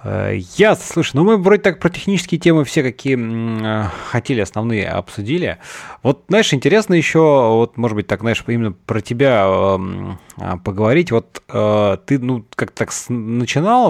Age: 30-49